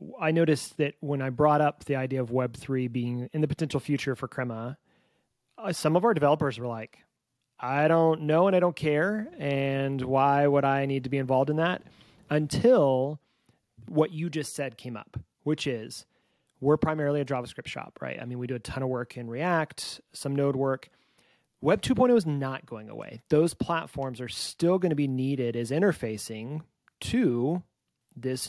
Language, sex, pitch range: English, male, 125-155 Hz